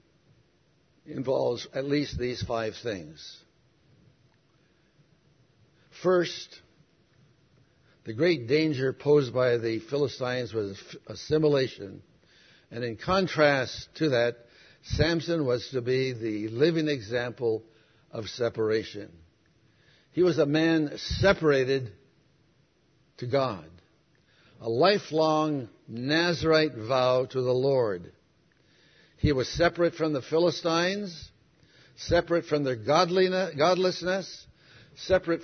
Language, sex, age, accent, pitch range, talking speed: English, male, 70-89, American, 125-165 Hz, 95 wpm